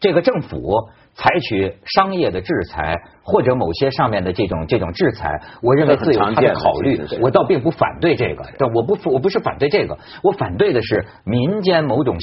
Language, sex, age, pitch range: Chinese, male, 50-69, 110-185 Hz